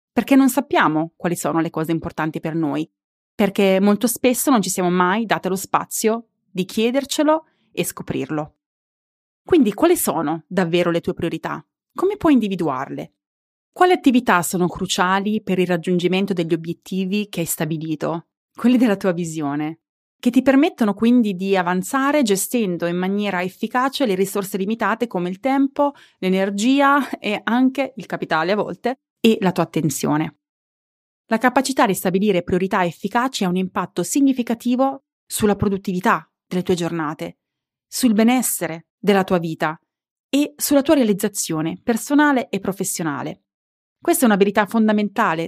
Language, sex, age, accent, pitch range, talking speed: Italian, female, 30-49, native, 175-245 Hz, 145 wpm